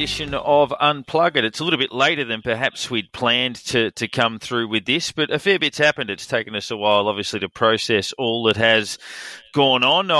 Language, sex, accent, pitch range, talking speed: English, male, Australian, 105-125 Hz, 210 wpm